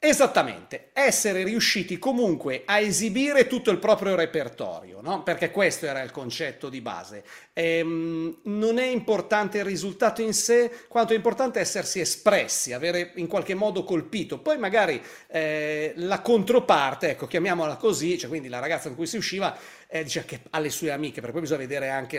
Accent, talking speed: native, 170 wpm